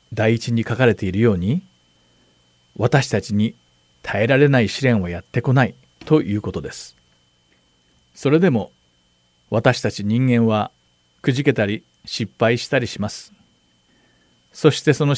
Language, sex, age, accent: Japanese, male, 40-59, native